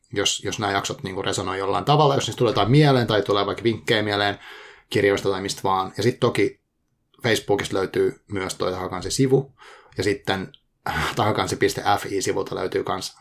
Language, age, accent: Finnish, 30-49, native